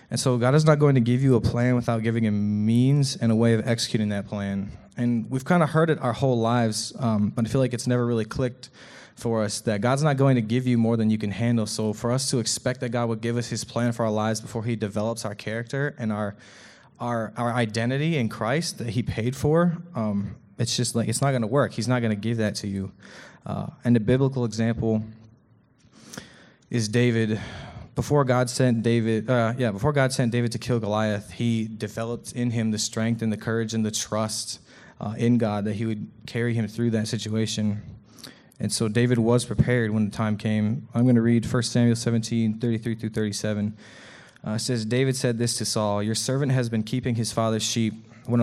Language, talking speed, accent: English, 225 wpm, American